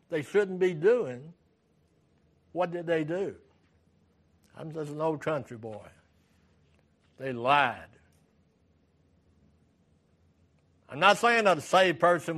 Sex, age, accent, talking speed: male, 60-79, American, 110 wpm